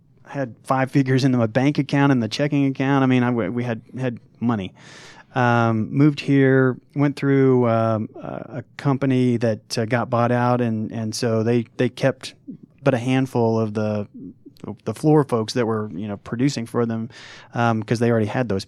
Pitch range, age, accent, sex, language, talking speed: 115-130 Hz, 30-49, American, male, English, 195 wpm